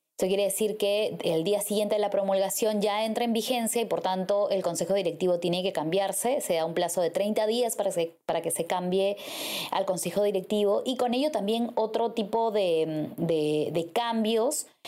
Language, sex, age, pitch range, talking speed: Spanish, female, 20-39, 185-225 Hz, 195 wpm